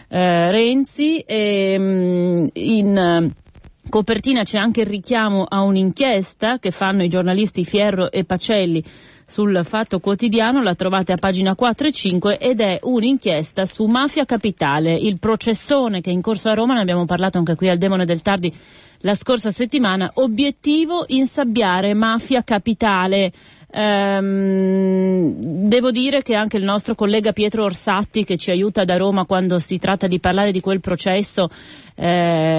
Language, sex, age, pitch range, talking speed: Italian, female, 40-59, 175-215 Hz, 145 wpm